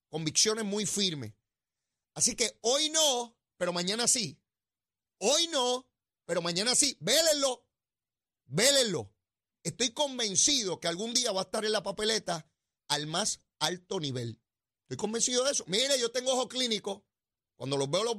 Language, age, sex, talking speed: Spanish, 30-49, male, 150 wpm